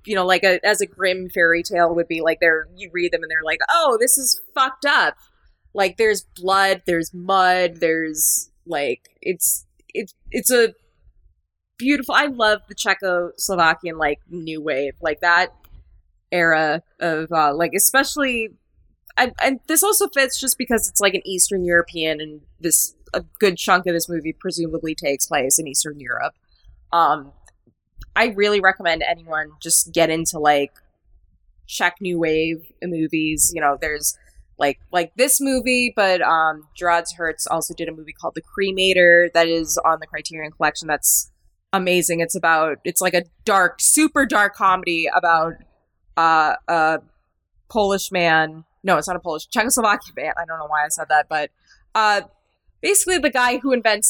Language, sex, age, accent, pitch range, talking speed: English, female, 20-39, American, 160-200 Hz, 165 wpm